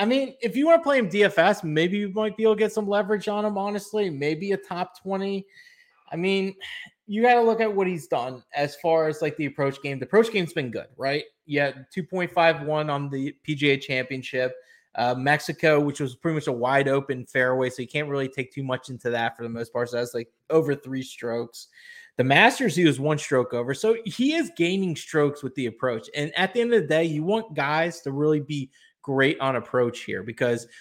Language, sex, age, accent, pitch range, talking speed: English, male, 20-39, American, 135-195 Hz, 220 wpm